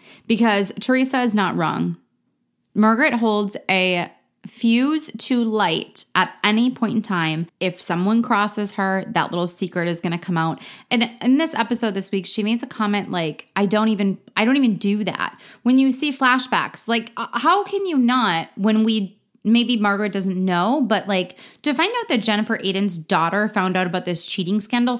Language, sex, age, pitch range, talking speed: English, female, 20-39, 180-240 Hz, 185 wpm